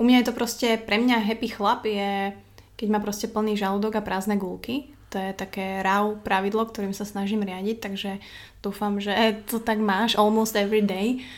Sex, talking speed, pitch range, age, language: female, 190 wpm, 195-215 Hz, 20-39, Slovak